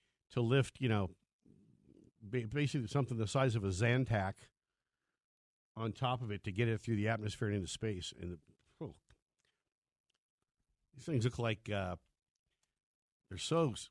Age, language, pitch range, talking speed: 60-79, English, 105-140 Hz, 150 wpm